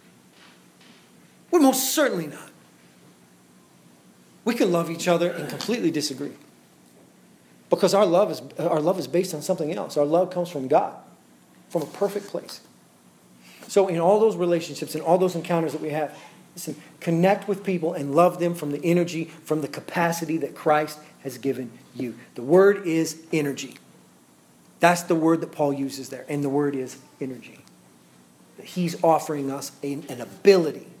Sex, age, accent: male, 40-59, American